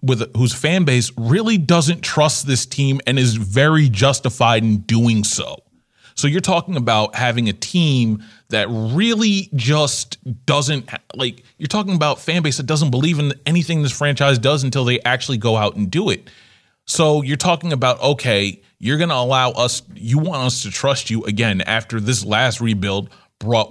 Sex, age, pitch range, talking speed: male, 30-49, 110-140 Hz, 180 wpm